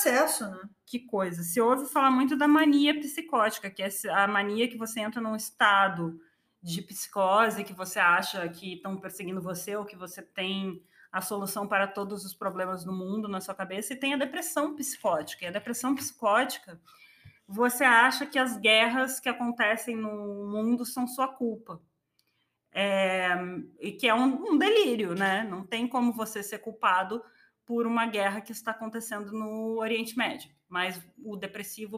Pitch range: 195-245 Hz